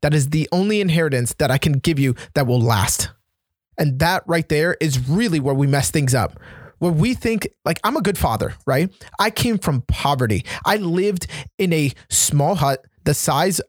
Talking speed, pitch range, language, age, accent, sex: 195 wpm, 130-175 Hz, English, 20-39, American, male